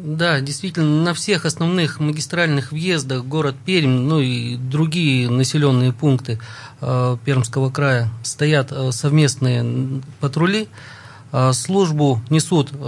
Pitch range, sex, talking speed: 125-155 Hz, male, 110 wpm